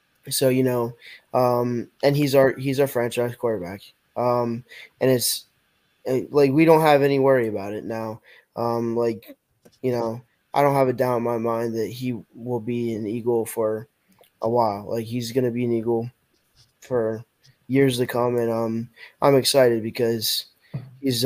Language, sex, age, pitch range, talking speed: English, male, 10-29, 115-135 Hz, 170 wpm